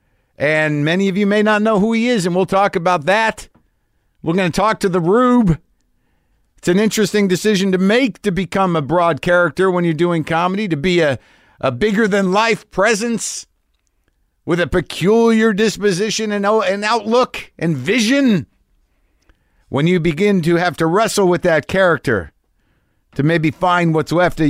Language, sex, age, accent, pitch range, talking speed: English, male, 50-69, American, 115-185 Hz, 165 wpm